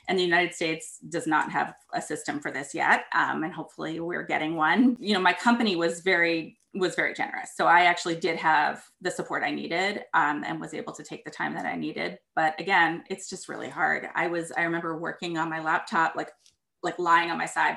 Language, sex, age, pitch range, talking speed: English, female, 20-39, 165-195 Hz, 225 wpm